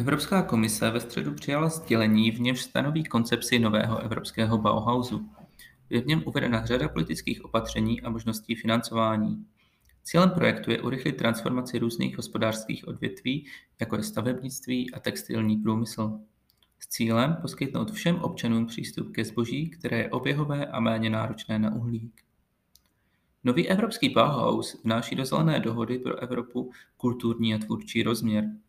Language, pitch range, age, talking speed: Czech, 110-130 Hz, 30-49, 140 wpm